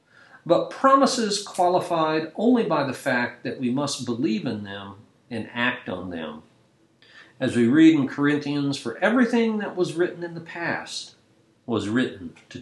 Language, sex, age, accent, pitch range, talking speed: English, male, 50-69, American, 120-200 Hz, 155 wpm